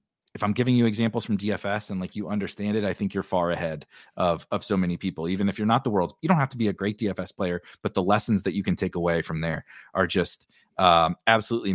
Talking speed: 260 wpm